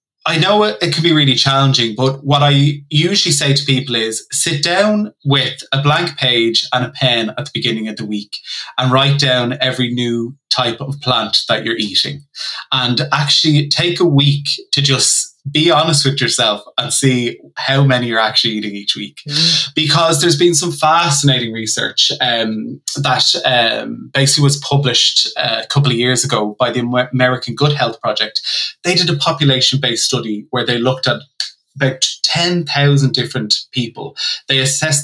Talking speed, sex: 170 wpm, male